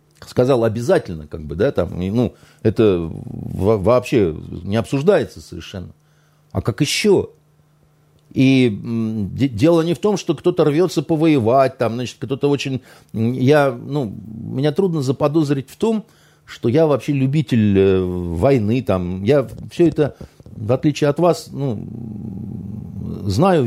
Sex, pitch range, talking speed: male, 110-155 Hz, 120 wpm